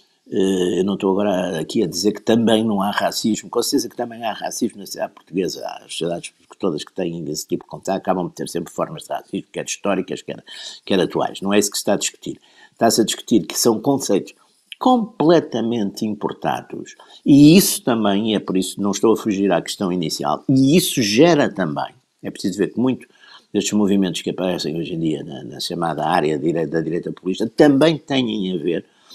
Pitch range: 95-130 Hz